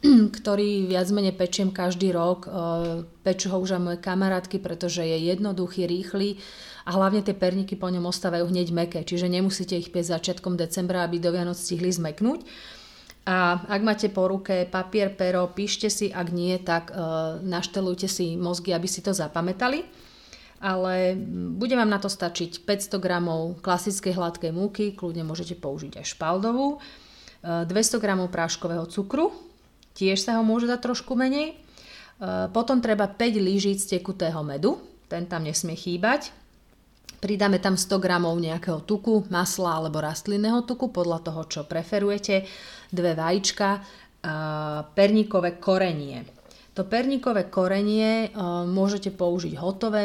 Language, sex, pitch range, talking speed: Slovak, female, 175-200 Hz, 140 wpm